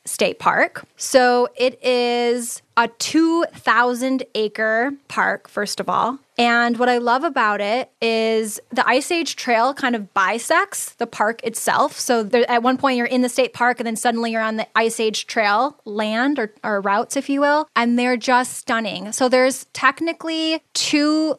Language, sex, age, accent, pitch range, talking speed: English, female, 10-29, American, 215-250 Hz, 175 wpm